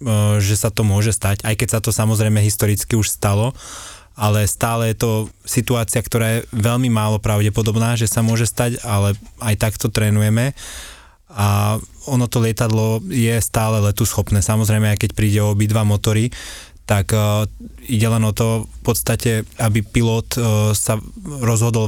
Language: Slovak